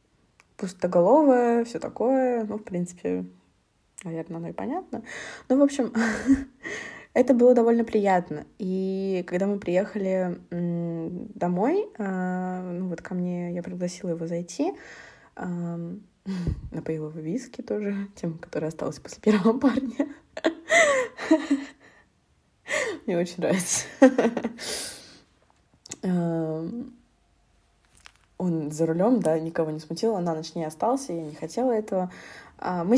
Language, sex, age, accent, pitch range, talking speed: Russian, female, 20-39, native, 170-230 Hz, 110 wpm